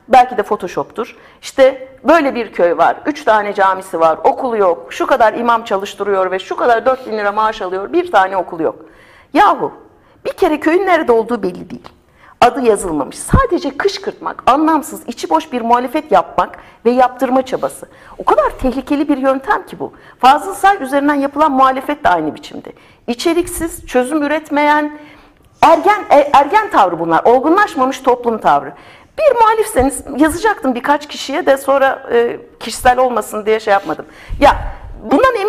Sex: female